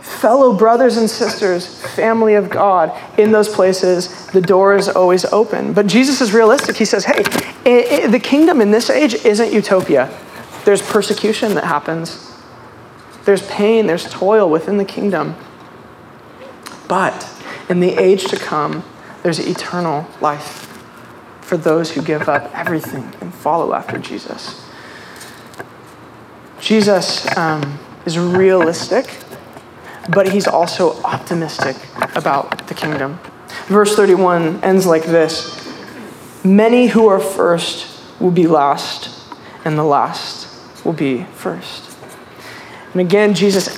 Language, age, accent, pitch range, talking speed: English, 20-39, American, 170-215 Hz, 125 wpm